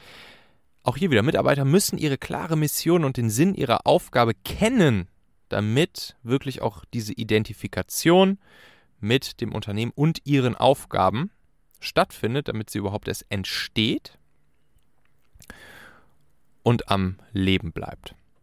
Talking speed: 115 wpm